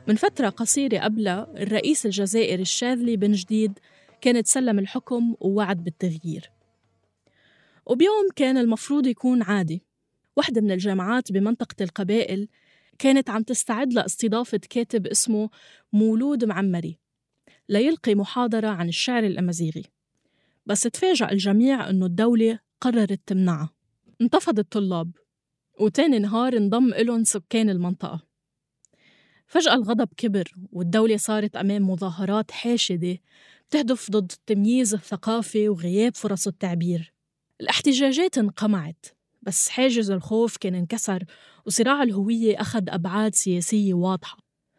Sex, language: female, Arabic